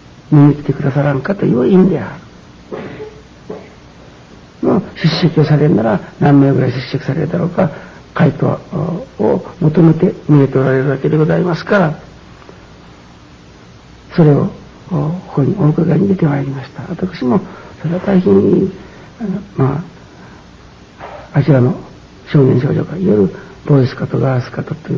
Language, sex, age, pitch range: Japanese, male, 60-79, 135-180 Hz